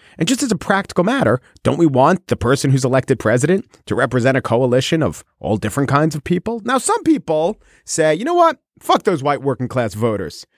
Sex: male